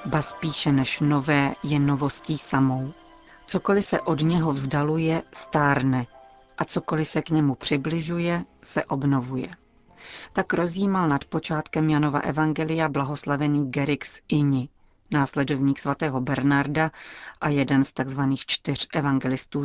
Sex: female